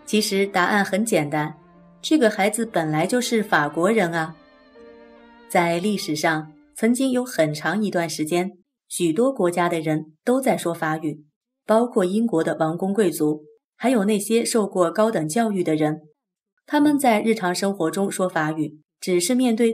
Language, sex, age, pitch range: Chinese, female, 30-49, 160-225 Hz